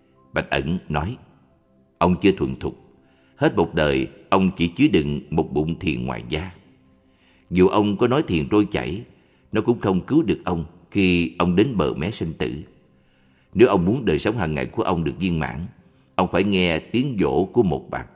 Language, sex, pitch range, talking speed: Vietnamese, male, 65-95 Hz, 195 wpm